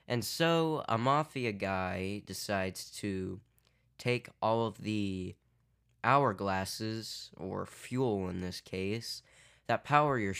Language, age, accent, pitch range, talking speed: English, 10-29, American, 100-125 Hz, 115 wpm